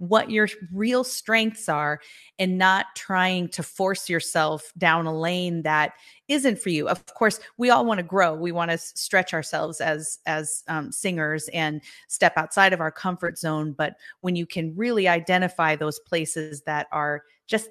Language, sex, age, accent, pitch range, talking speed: English, female, 30-49, American, 155-180 Hz, 175 wpm